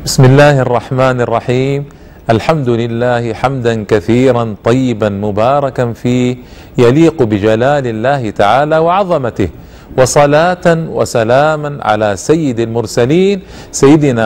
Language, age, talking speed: Arabic, 40-59, 95 wpm